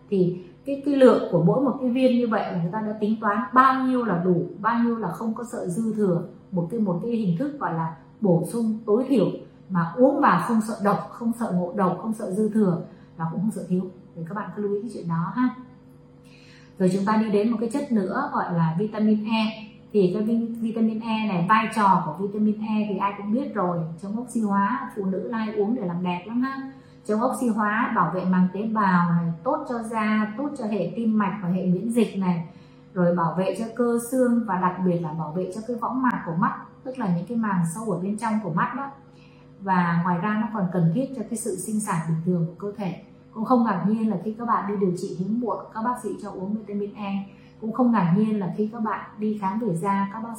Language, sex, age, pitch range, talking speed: Vietnamese, female, 20-39, 185-230 Hz, 255 wpm